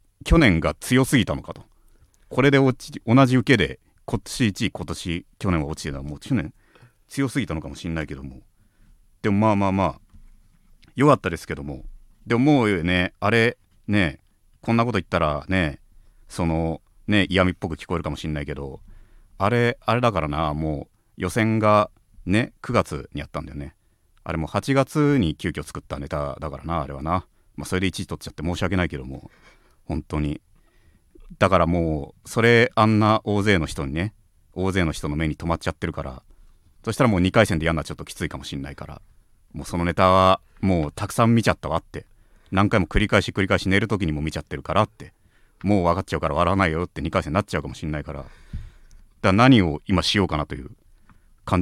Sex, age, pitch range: male, 40-59, 80-105 Hz